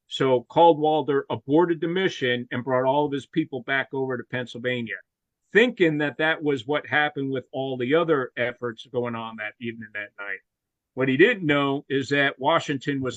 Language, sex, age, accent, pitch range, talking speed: English, male, 50-69, American, 130-160 Hz, 180 wpm